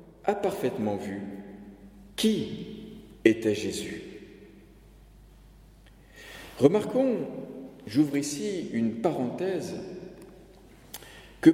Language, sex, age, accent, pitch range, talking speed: French, male, 50-69, French, 130-210 Hz, 60 wpm